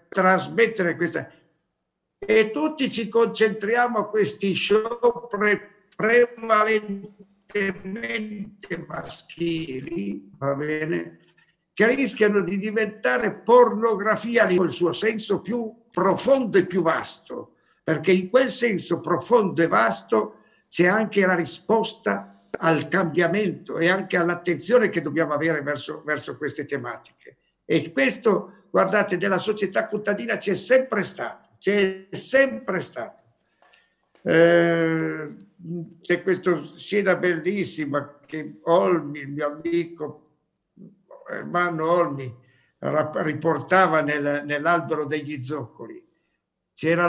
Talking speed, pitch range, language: 100 wpm, 155-205 Hz, Italian